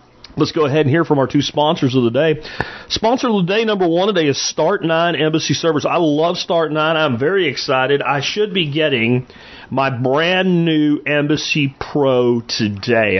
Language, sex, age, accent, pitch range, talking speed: English, male, 40-59, American, 125-160 Hz, 175 wpm